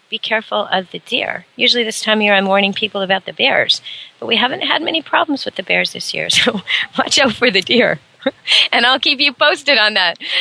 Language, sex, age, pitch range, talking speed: English, female, 40-59, 195-240 Hz, 230 wpm